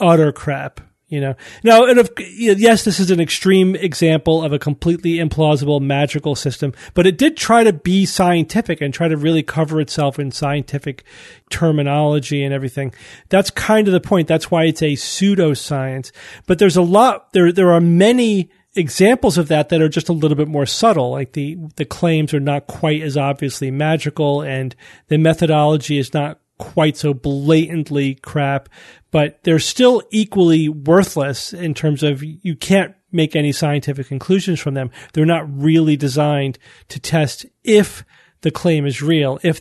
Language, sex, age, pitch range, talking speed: English, male, 40-59, 145-170 Hz, 170 wpm